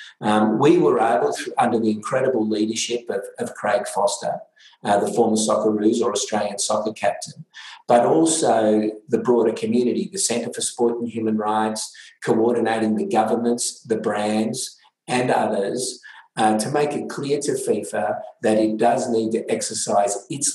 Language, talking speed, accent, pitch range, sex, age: English, 160 wpm, Australian, 105-120 Hz, male, 50-69